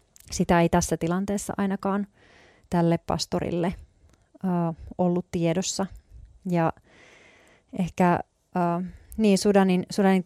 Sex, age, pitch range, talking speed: female, 30-49, 170-190 Hz, 95 wpm